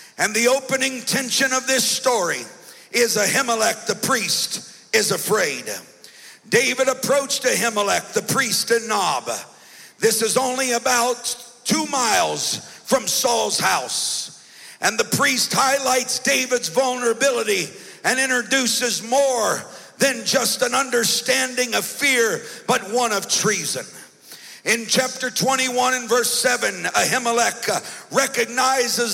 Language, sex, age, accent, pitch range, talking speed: English, male, 50-69, American, 230-260 Hz, 115 wpm